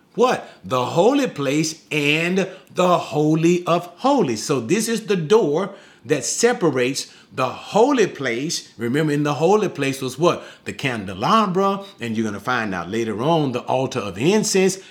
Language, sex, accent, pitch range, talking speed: English, male, American, 125-175 Hz, 155 wpm